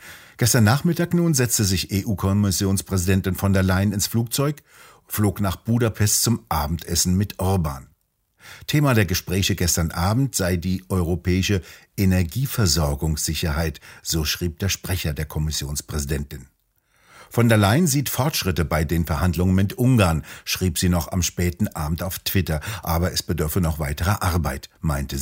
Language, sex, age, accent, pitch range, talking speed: German, male, 50-69, German, 85-110 Hz, 140 wpm